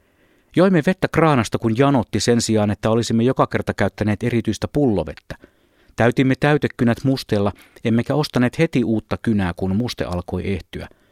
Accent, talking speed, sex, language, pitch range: native, 140 wpm, male, Finnish, 100-130 Hz